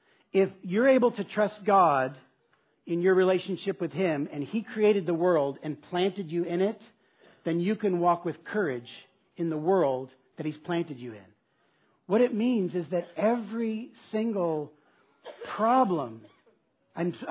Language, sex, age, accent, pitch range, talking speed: English, male, 40-59, American, 150-195 Hz, 155 wpm